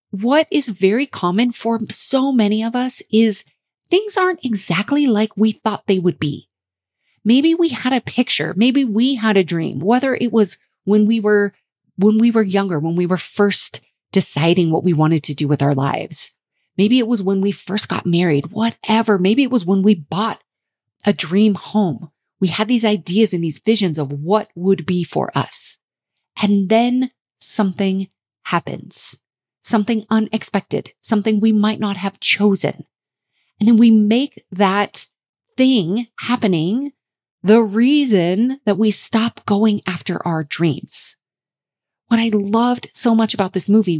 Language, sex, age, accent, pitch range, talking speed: English, female, 30-49, American, 180-235 Hz, 160 wpm